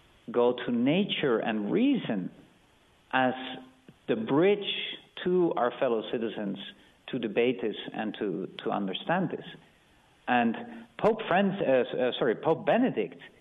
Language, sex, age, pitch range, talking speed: English, male, 50-69, 120-165 Hz, 125 wpm